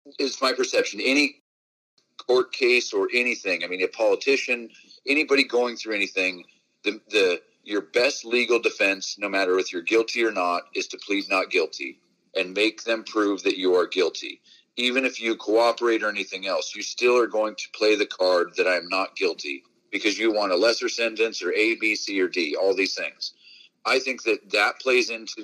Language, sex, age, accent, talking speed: English, male, 40-59, American, 195 wpm